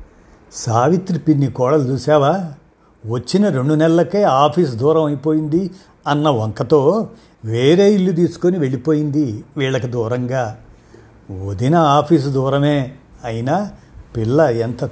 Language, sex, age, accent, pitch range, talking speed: Telugu, male, 50-69, native, 120-160 Hz, 95 wpm